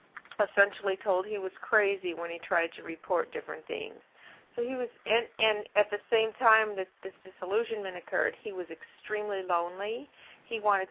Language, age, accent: English, 40-59, American